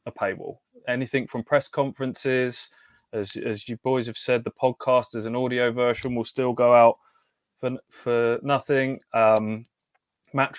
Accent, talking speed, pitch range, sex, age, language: British, 155 wpm, 105-130 Hz, male, 20-39, English